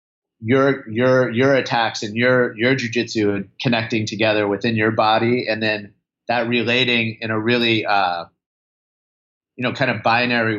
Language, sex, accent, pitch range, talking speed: English, male, American, 105-120 Hz, 145 wpm